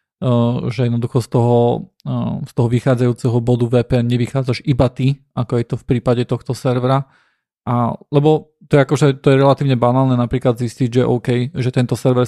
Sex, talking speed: male, 180 wpm